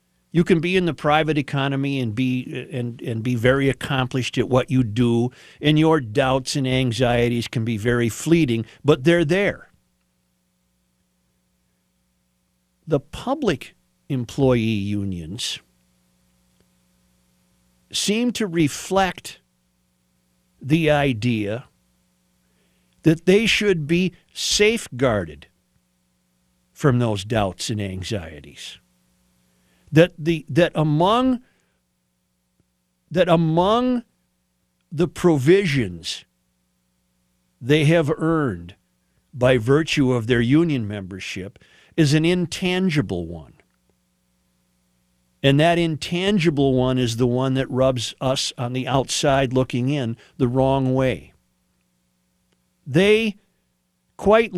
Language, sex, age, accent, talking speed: English, male, 50-69, American, 100 wpm